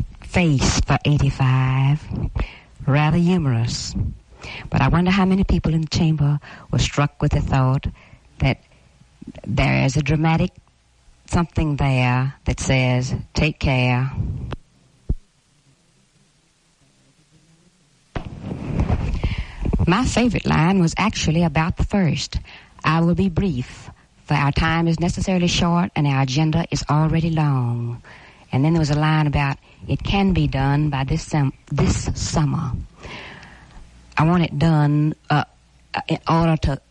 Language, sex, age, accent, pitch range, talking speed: English, female, 60-79, American, 130-160 Hz, 125 wpm